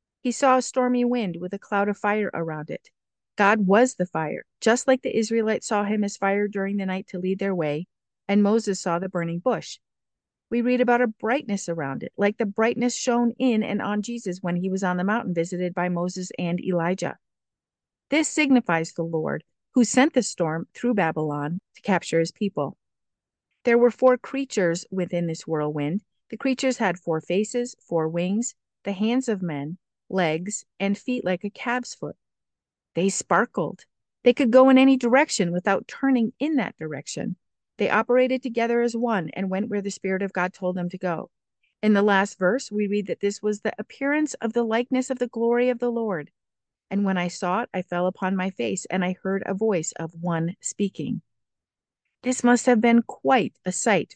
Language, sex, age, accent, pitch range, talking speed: English, female, 50-69, American, 180-235 Hz, 195 wpm